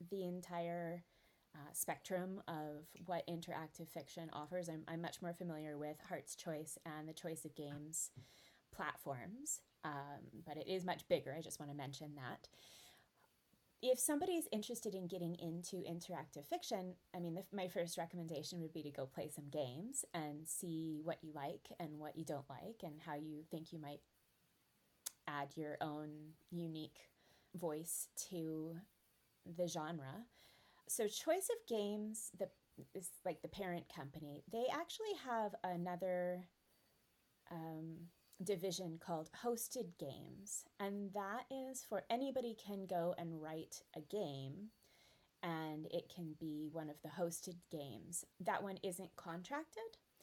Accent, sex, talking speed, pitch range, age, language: American, female, 150 wpm, 155-195 Hz, 20-39, English